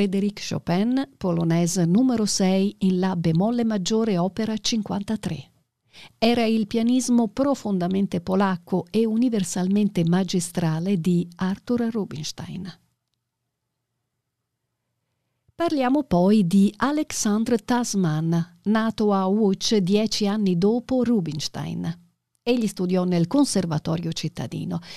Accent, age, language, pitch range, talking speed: native, 50-69, Italian, 175-230 Hz, 95 wpm